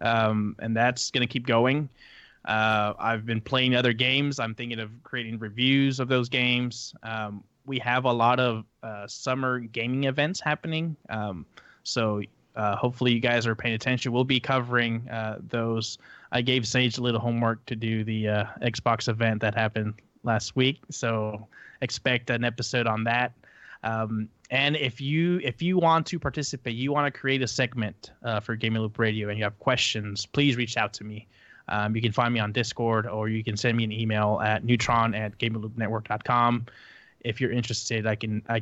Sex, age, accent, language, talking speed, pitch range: male, 20-39, American, English, 185 wpm, 110-130 Hz